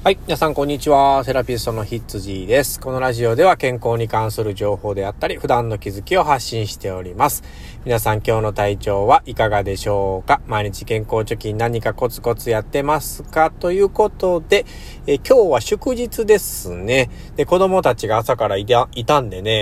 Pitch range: 100-130 Hz